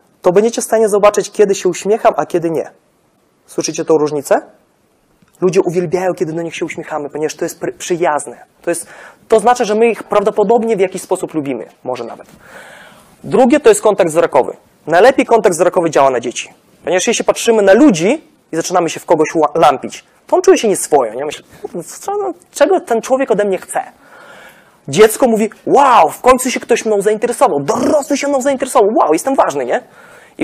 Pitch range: 170-245 Hz